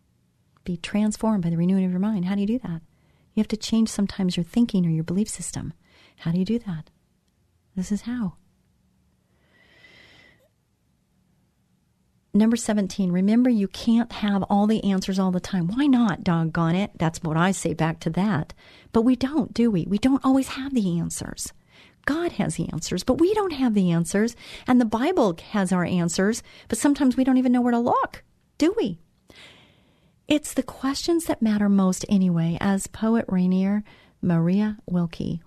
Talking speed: 180 wpm